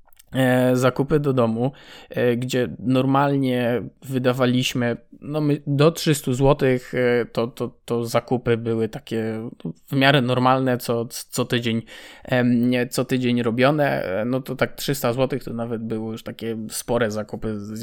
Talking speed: 130 wpm